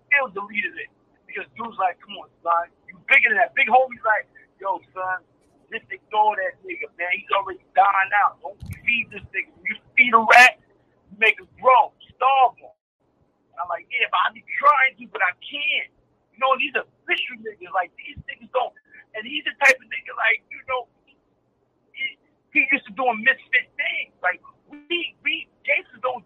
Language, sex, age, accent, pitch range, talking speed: English, male, 50-69, American, 215-300 Hz, 200 wpm